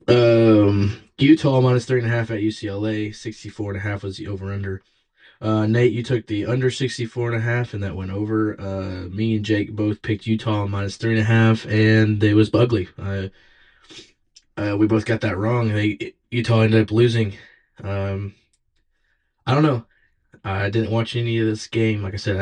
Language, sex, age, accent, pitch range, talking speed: English, male, 20-39, American, 100-120 Hz, 200 wpm